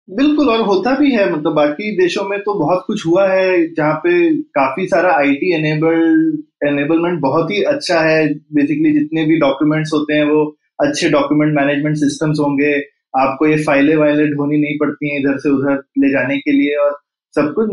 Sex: male